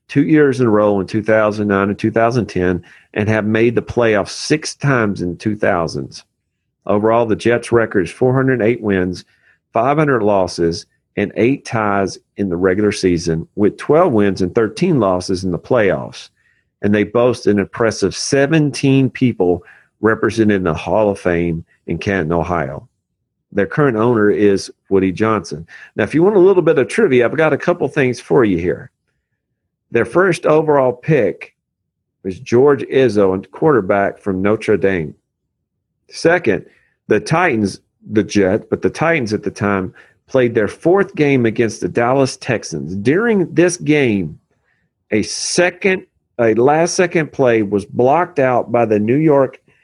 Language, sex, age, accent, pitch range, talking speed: English, male, 40-59, American, 95-135 Hz, 155 wpm